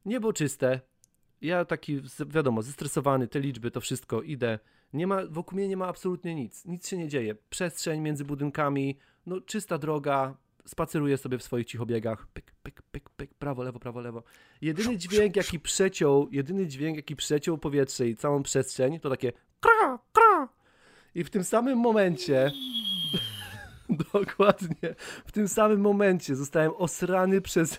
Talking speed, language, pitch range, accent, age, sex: 150 wpm, Polish, 135-180 Hz, native, 30-49, male